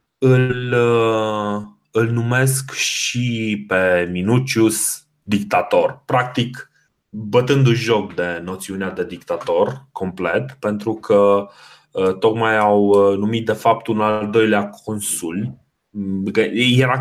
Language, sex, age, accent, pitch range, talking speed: Romanian, male, 30-49, native, 100-135 Hz, 100 wpm